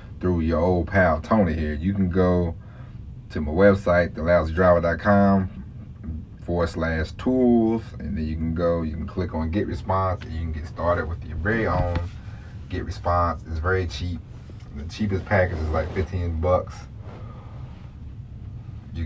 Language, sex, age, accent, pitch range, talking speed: English, male, 30-49, American, 85-105 Hz, 155 wpm